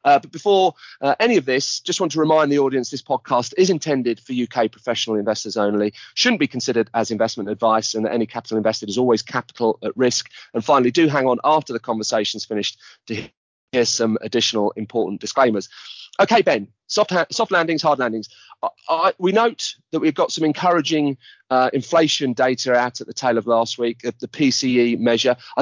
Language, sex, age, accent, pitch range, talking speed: English, male, 30-49, British, 115-155 Hz, 195 wpm